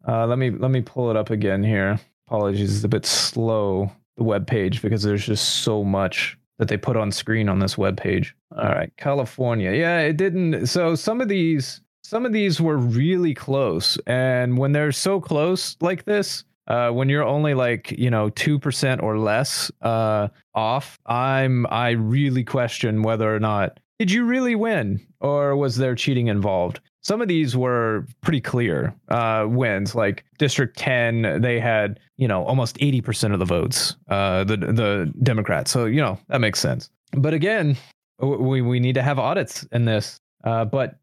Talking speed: 185 wpm